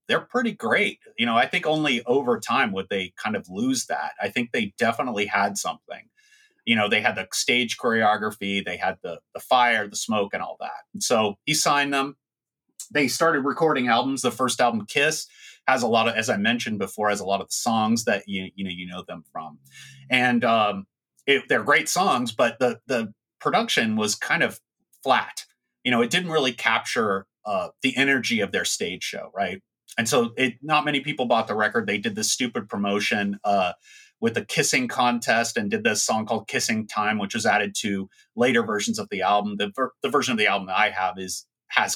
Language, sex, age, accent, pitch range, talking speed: English, male, 30-49, American, 105-155 Hz, 210 wpm